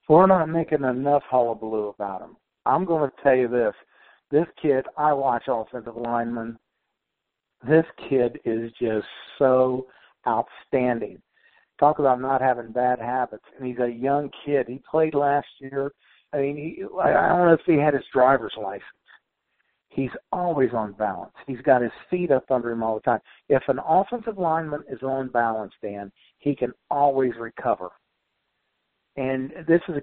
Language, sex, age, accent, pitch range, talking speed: English, male, 60-79, American, 120-145 Hz, 160 wpm